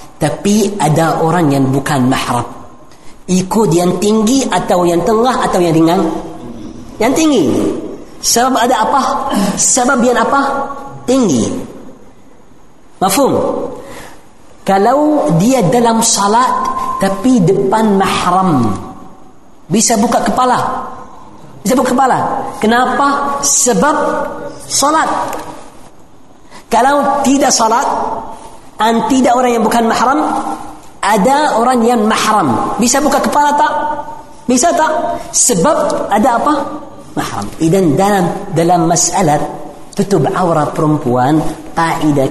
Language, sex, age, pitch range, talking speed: Indonesian, female, 40-59, 165-270 Hz, 100 wpm